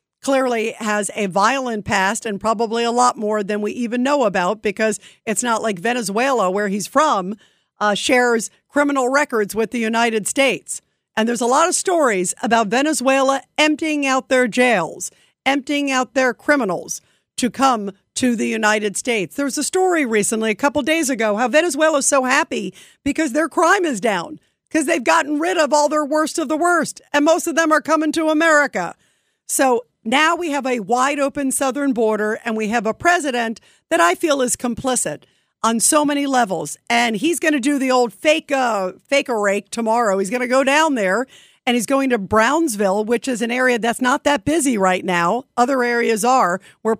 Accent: American